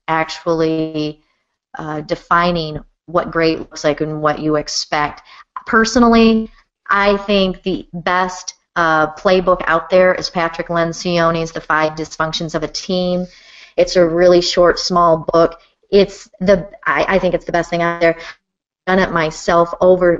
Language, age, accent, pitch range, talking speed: English, 30-49, American, 160-190 Hz, 150 wpm